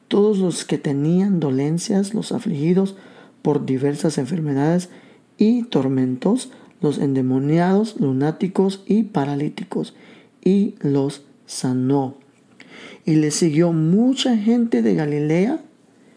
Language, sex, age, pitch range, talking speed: Spanish, male, 50-69, 150-225 Hz, 100 wpm